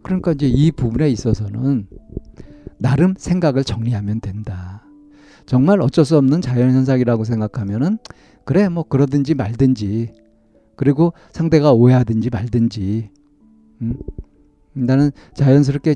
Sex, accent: male, native